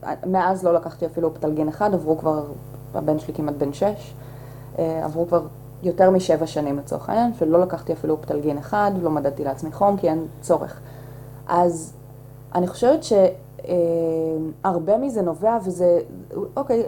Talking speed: 140 wpm